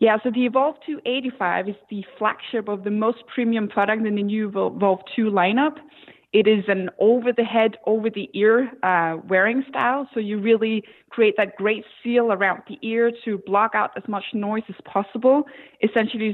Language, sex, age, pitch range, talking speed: English, female, 20-39, 195-235 Hz, 170 wpm